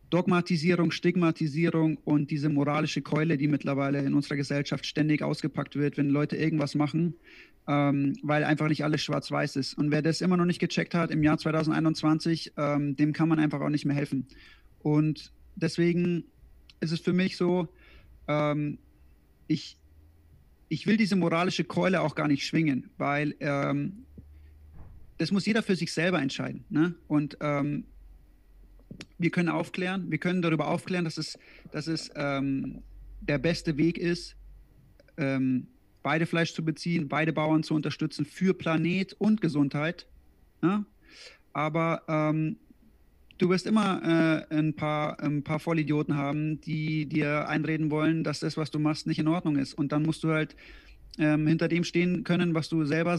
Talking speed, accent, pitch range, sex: 160 wpm, German, 145-165 Hz, male